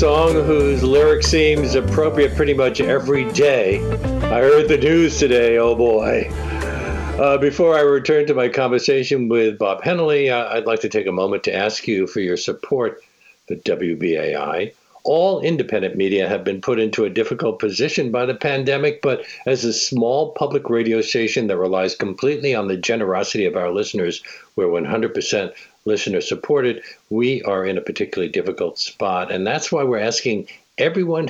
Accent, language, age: American, English, 60-79